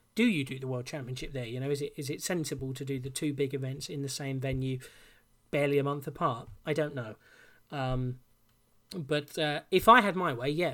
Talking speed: 225 wpm